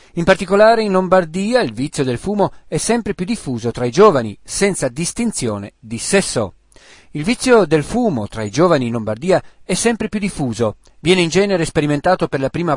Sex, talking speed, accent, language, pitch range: male, 185 wpm, native, Italian, 130-190 Hz